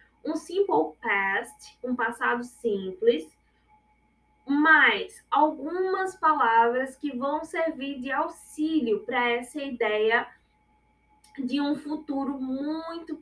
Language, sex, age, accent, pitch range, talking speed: Portuguese, female, 10-29, Brazilian, 250-330 Hz, 95 wpm